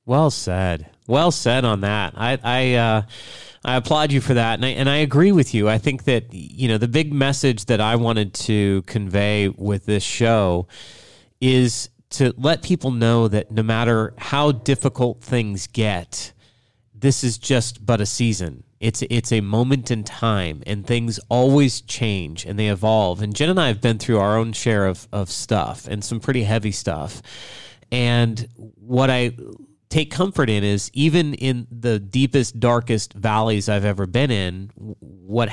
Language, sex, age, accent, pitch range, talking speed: English, male, 30-49, American, 105-125 Hz, 175 wpm